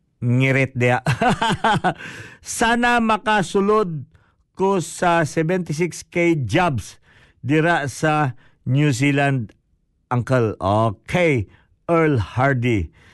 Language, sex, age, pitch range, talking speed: Filipino, male, 50-69, 120-165 Hz, 70 wpm